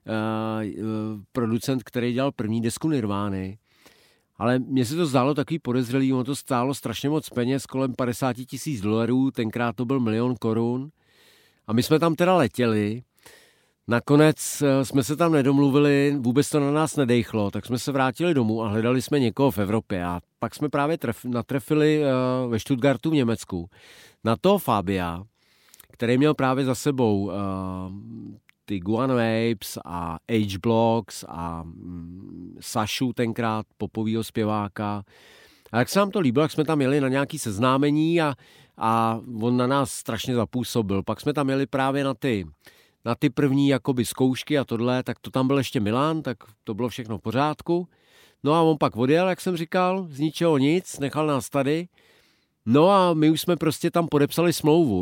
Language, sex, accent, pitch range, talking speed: Czech, male, native, 110-145 Hz, 165 wpm